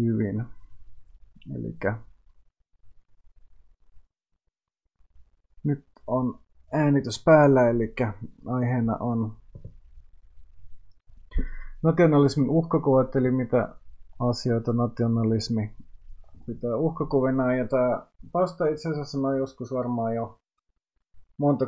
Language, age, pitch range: Finnish, 30-49, 105-130 Hz